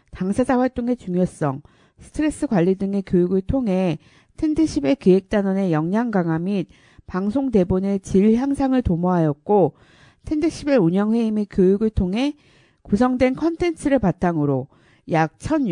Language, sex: Korean, female